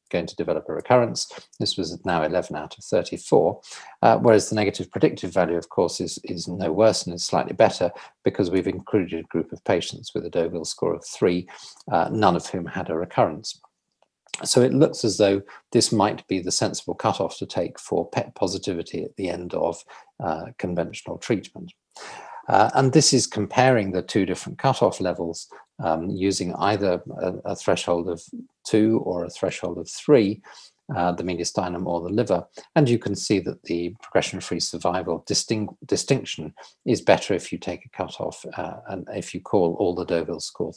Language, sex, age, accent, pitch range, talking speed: English, male, 40-59, British, 90-130 Hz, 185 wpm